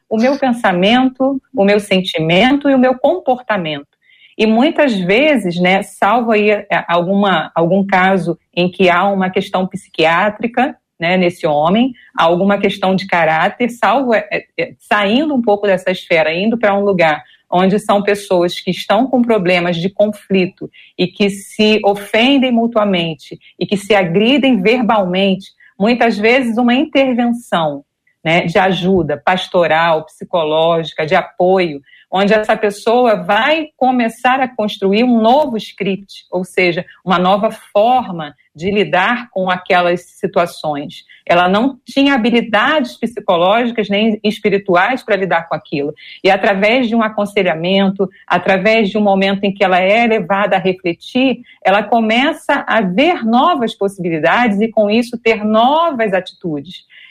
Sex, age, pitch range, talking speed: female, 40-59, 185-230 Hz, 140 wpm